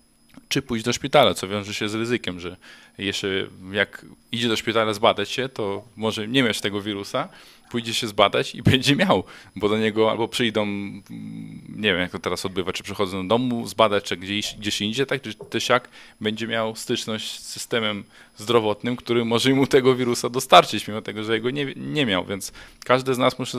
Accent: native